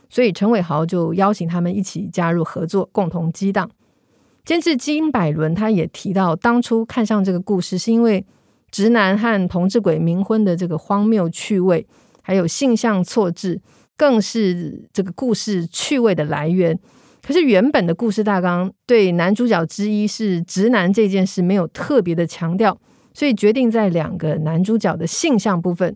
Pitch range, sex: 175-230 Hz, female